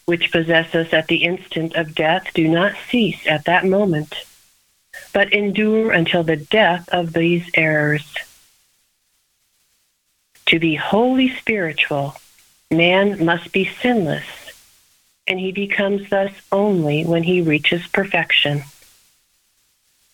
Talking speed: 115 wpm